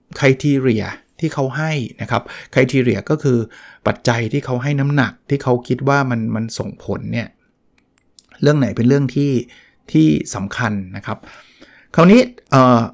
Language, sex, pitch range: Thai, male, 115-140 Hz